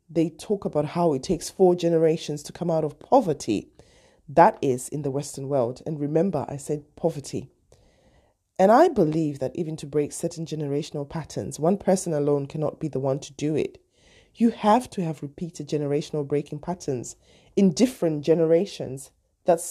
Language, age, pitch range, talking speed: English, 20-39, 145-185 Hz, 170 wpm